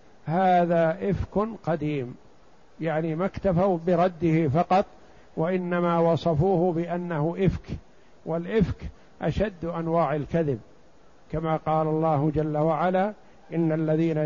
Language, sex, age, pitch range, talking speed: Arabic, male, 50-69, 155-185 Hz, 95 wpm